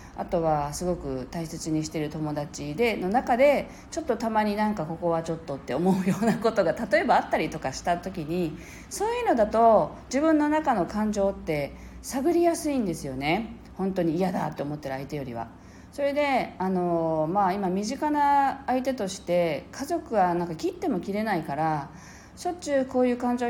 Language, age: Japanese, 40-59